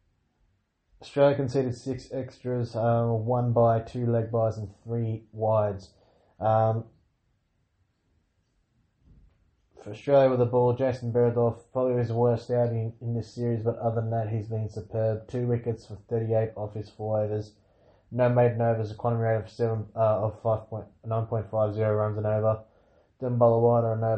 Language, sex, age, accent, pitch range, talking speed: English, male, 20-39, Australian, 110-115 Hz, 165 wpm